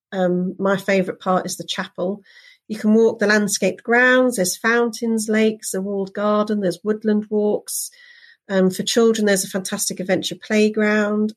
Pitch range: 185-225 Hz